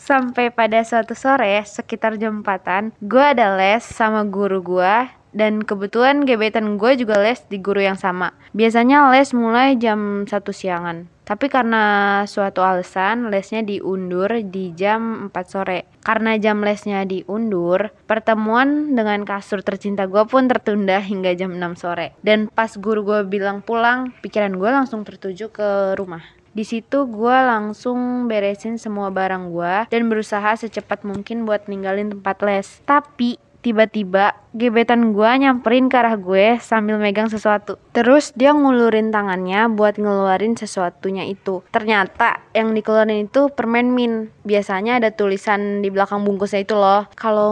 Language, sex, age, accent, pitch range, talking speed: Indonesian, female, 20-39, native, 195-230 Hz, 145 wpm